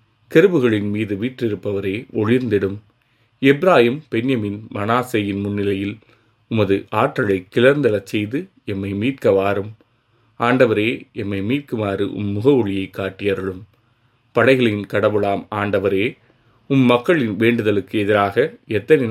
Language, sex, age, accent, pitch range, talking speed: Tamil, male, 30-49, native, 100-120 Hz, 90 wpm